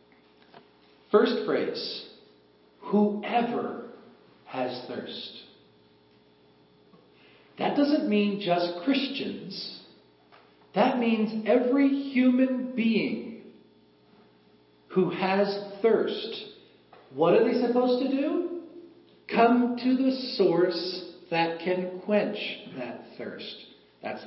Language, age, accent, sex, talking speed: English, 50-69, American, male, 85 wpm